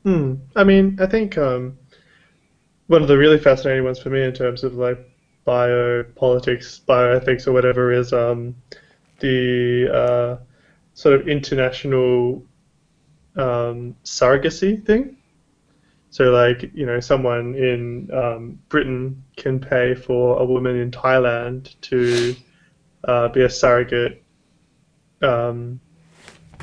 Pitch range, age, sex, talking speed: 120-135 Hz, 20-39, male, 120 wpm